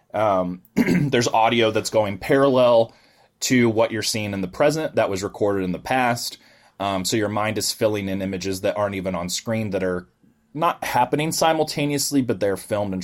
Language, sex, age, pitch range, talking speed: English, male, 20-39, 95-125 Hz, 190 wpm